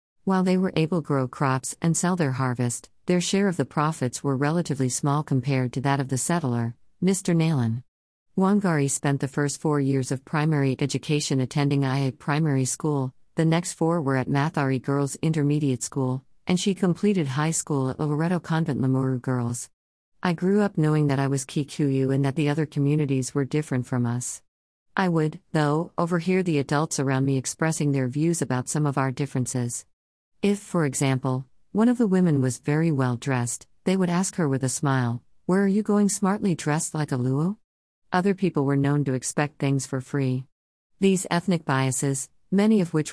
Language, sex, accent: English, female, American